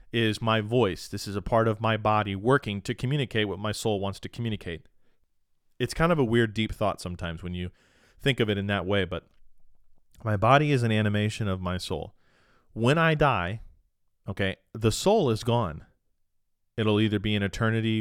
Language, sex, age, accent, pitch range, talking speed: English, male, 40-59, American, 95-115 Hz, 190 wpm